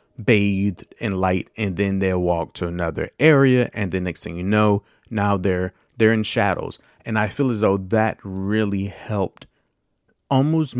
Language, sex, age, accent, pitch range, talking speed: English, male, 30-49, American, 95-125 Hz, 165 wpm